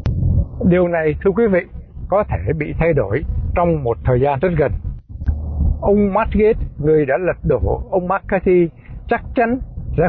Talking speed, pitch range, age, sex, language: 160 wpm, 125-180 Hz, 60-79, male, Vietnamese